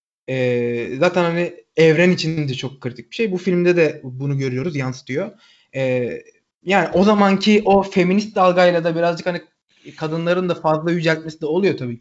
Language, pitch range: Turkish, 145-190 Hz